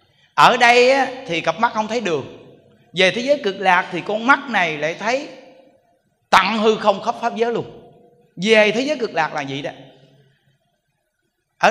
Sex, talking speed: male, 180 wpm